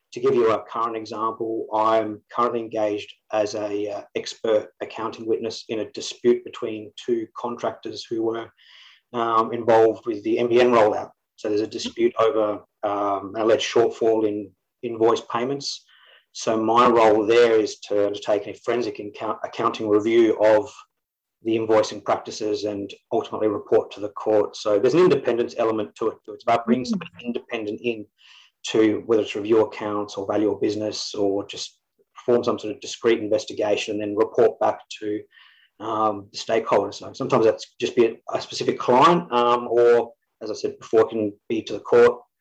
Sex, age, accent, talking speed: male, 30-49, Australian, 165 wpm